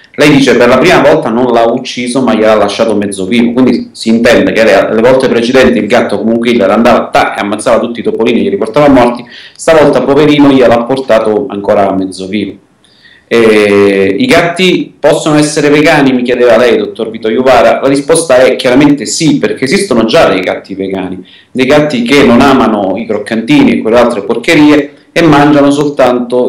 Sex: male